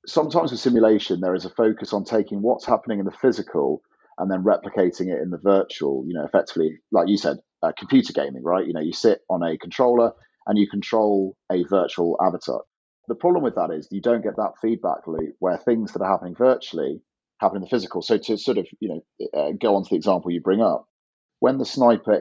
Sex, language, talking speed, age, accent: male, English, 225 wpm, 30-49, British